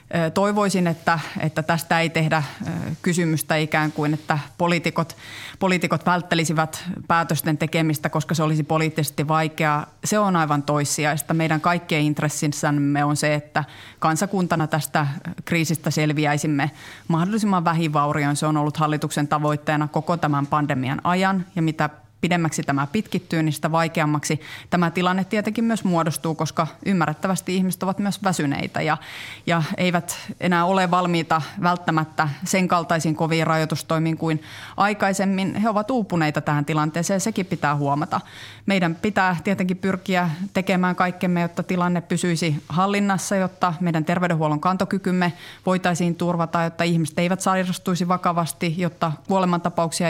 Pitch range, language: 155-180 Hz, Finnish